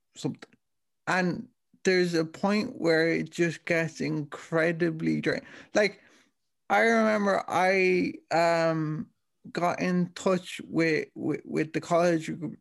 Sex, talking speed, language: male, 125 wpm, English